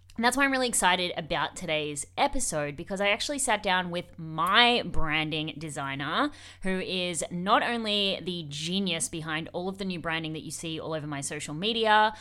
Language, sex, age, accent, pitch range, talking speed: English, female, 20-39, Australian, 160-200 Hz, 185 wpm